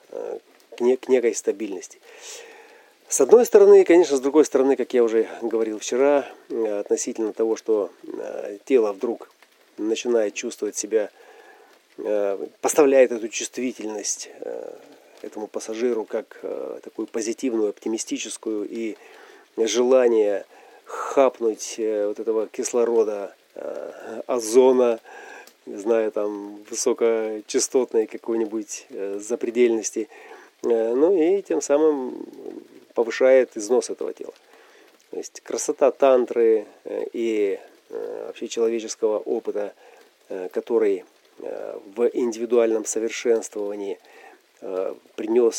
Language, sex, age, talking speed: Russian, male, 30-49, 85 wpm